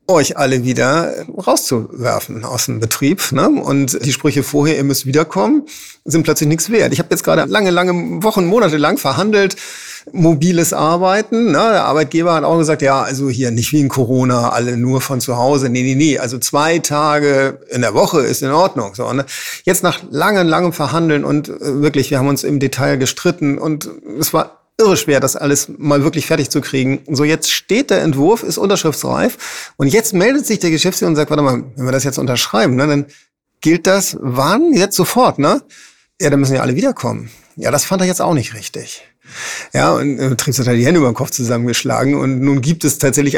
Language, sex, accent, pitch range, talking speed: German, male, German, 135-170 Hz, 205 wpm